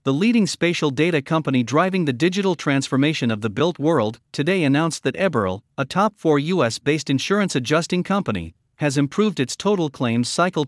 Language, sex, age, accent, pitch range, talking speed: English, male, 50-69, American, 125-180 Hz, 155 wpm